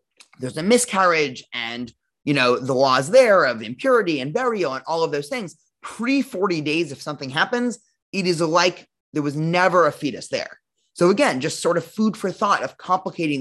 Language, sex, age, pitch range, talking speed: English, male, 20-39, 130-180 Hz, 190 wpm